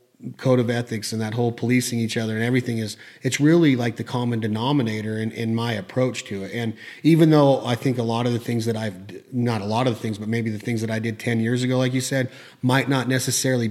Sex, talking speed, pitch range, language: male, 255 wpm, 110-130 Hz, English